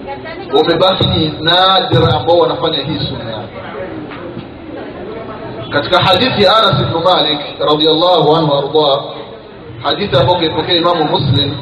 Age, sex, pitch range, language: 40-59, male, 155-210 Hz, Swahili